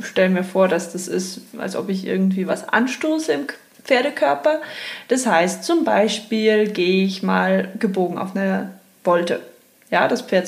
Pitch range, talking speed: 195-245 Hz, 160 wpm